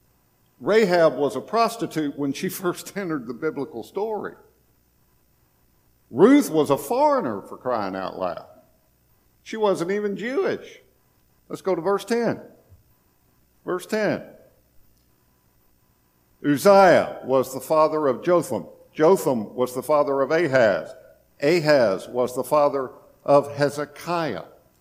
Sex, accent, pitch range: male, American, 130-190 Hz